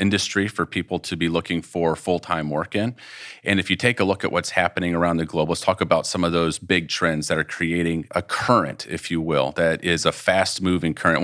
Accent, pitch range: American, 80-95 Hz